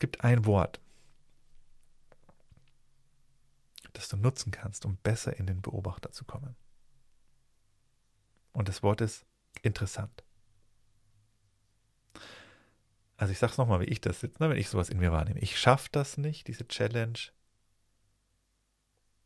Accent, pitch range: German, 95-125 Hz